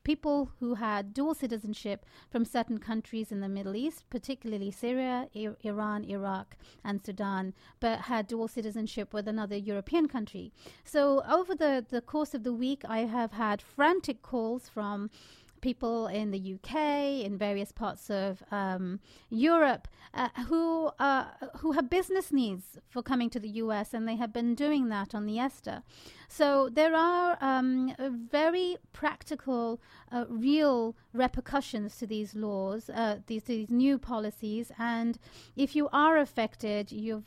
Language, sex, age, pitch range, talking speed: English, female, 30-49, 215-280 Hz, 155 wpm